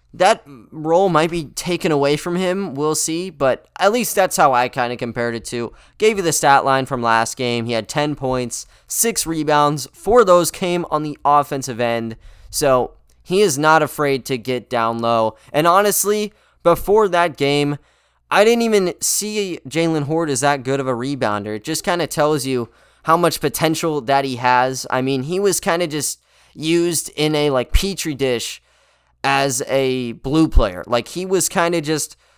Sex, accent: male, American